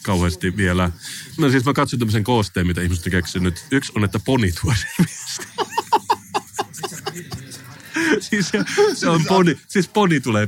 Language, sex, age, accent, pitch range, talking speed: Finnish, male, 30-49, native, 95-125 Hz, 145 wpm